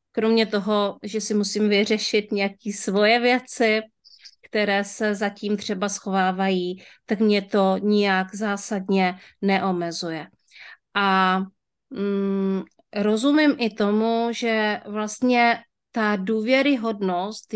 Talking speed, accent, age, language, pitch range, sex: 95 wpm, native, 30-49, Czech, 195-230 Hz, female